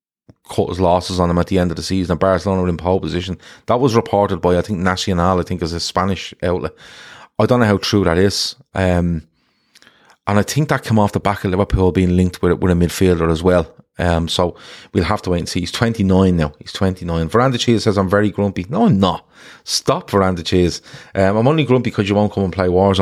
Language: English